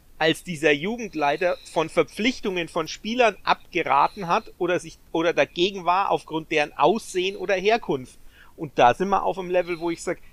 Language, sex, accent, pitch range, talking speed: German, male, German, 150-190 Hz, 170 wpm